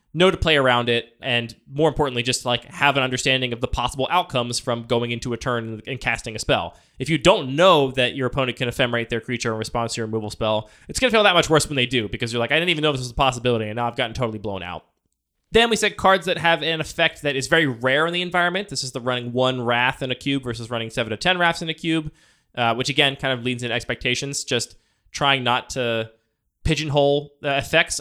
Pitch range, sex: 120-145 Hz, male